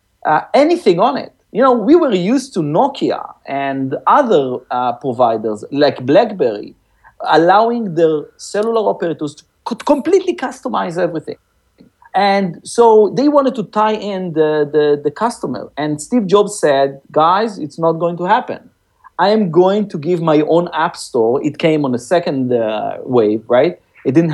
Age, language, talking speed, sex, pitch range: 50-69, English, 165 wpm, male, 150-215 Hz